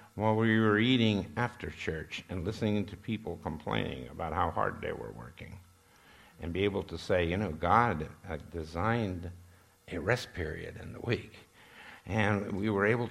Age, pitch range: 60-79, 90-120 Hz